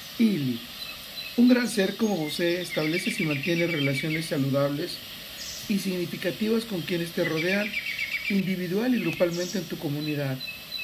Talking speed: 125 wpm